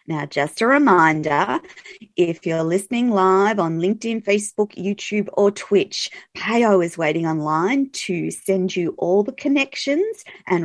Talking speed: 140 wpm